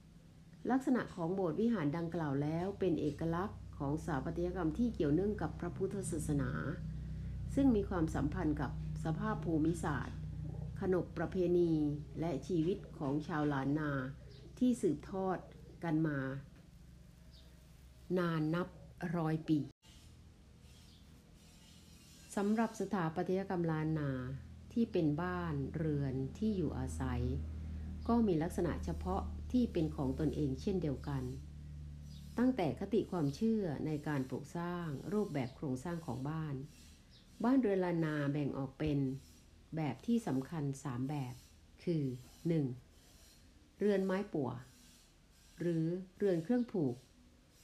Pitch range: 135-180 Hz